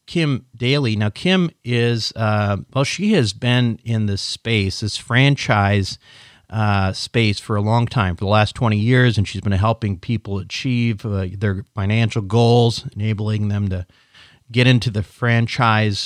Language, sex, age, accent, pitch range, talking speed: English, male, 40-59, American, 105-135 Hz, 160 wpm